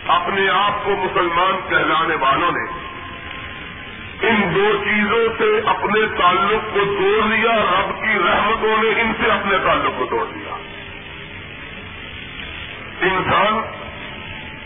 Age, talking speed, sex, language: 50-69, 115 wpm, male, Urdu